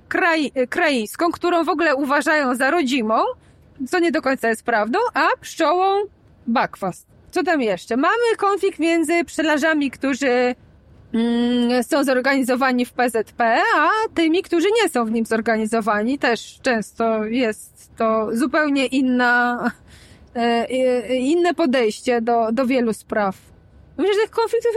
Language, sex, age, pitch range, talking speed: Polish, female, 20-39, 240-335 Hz, 125 wpm